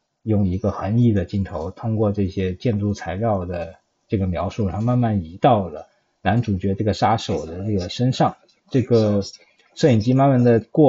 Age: 20-39